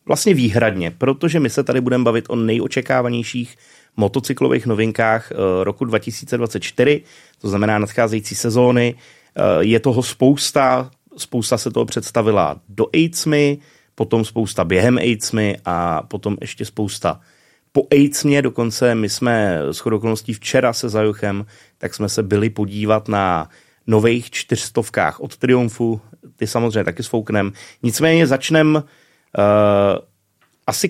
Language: Czech